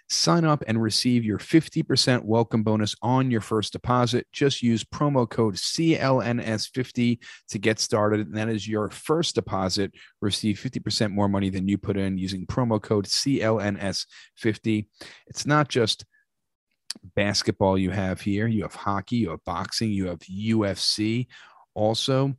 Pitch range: 100-125 Hz